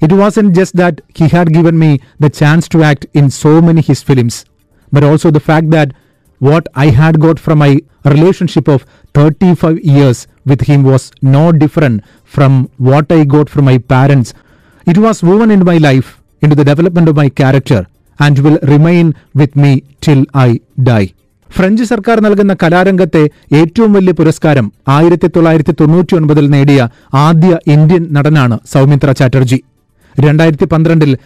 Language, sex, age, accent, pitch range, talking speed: Malayalam, male, 30-49, native, 140-170 Hz, 155 wpm